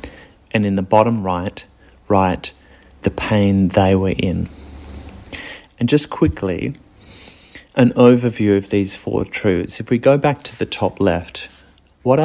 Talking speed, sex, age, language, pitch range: 140 wpm, male, 30-49, English, 90-115 Hz